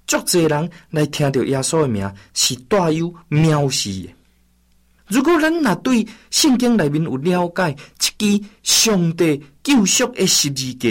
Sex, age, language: male, 50-69, Chinese